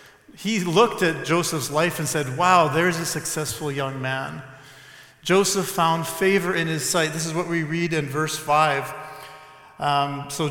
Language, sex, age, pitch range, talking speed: English, male, 40-59, 145-180 Hz, 160 wpm